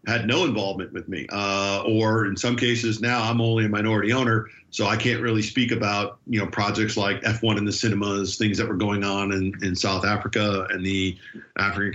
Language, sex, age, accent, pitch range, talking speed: English, male, 40-59, American, 105-120 Hz, 210 wpm